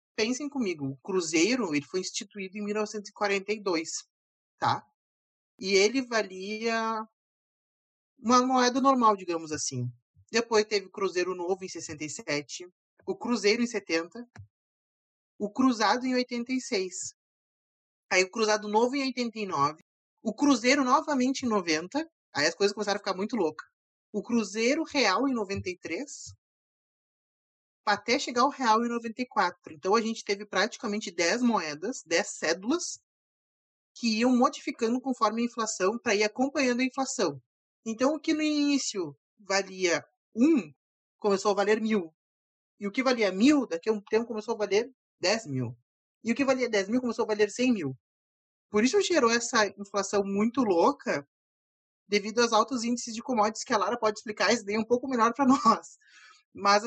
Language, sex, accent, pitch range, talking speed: Portuguese, male, Brazilian, 195-250 Hz, 150 wpm